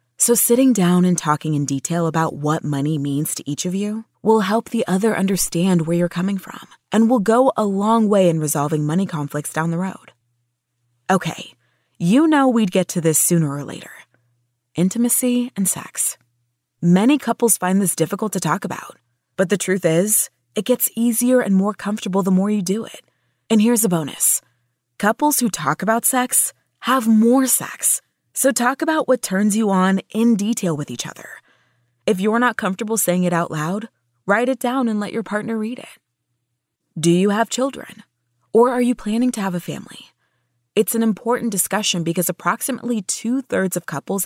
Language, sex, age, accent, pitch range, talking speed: English, female, 20-39, American, 155-230 Hz, 185 wpm